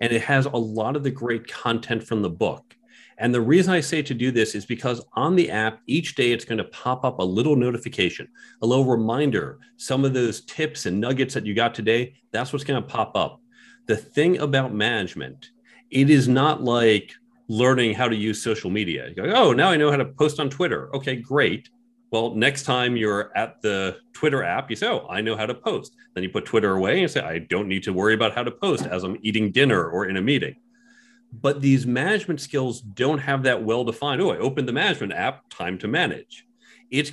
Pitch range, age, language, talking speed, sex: 110-140 Hz, 40-59, English, 220 wpm, male